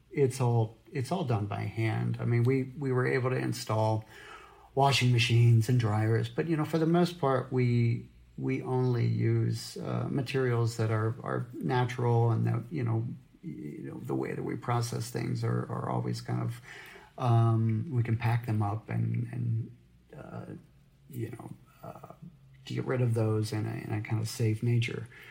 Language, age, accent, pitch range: English, 40-59, American, 110-130 Hz